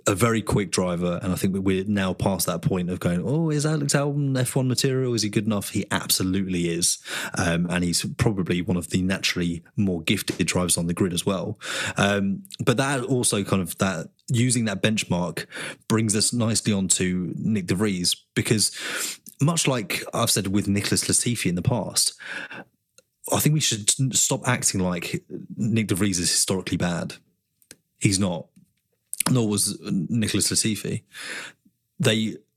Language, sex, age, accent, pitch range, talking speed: English, male, 30-49, British, 95-125 Hz, 165 wpm